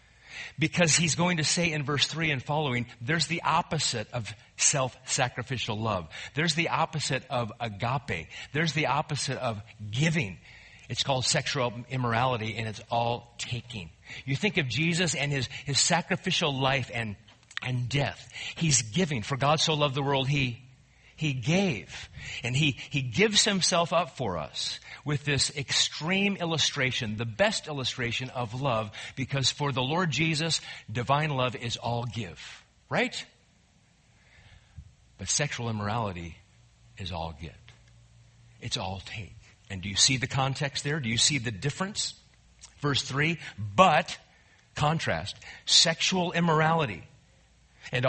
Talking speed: 140 wpm